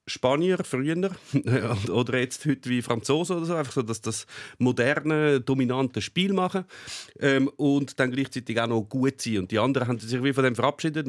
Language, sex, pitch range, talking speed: German, male, 110-145 Hz, 185 wpm